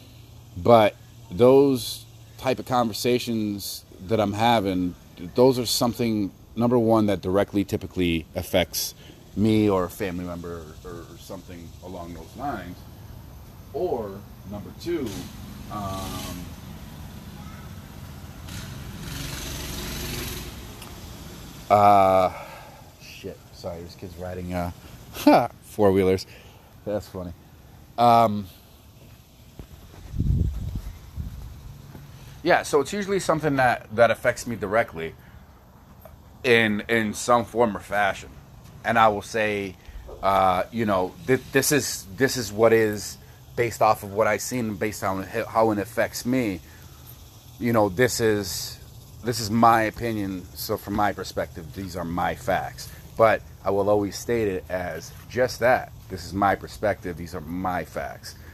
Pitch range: 90-115 Hz